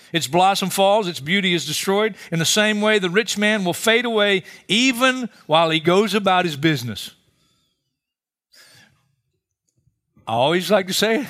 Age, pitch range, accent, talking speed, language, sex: 50-69, 145-205 Hz, American, 155 wpm, English, male